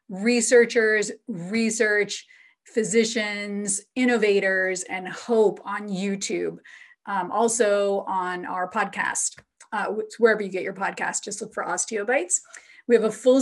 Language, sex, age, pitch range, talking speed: English, female, 30-49, 200-240 Hz, 120 wpm